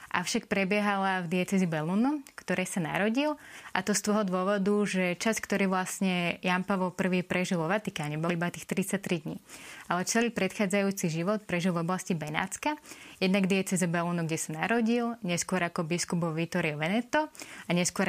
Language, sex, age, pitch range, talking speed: Slovak, female, 20-39, 170-205 Hz, 160 wpm